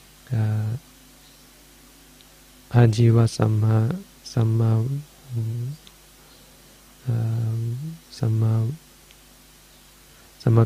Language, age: English, 30-49